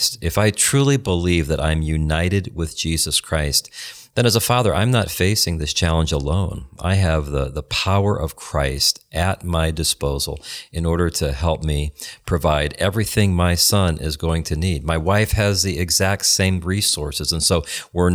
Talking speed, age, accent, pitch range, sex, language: 175 wpm, 40-59, American, 80-105 Hz, male, English